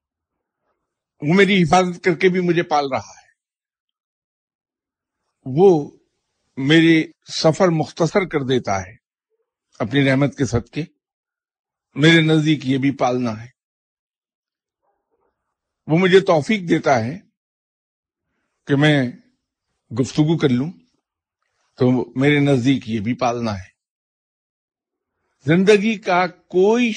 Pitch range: 130-175 Hz